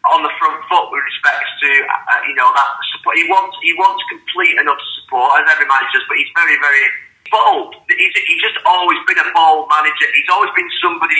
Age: 30-49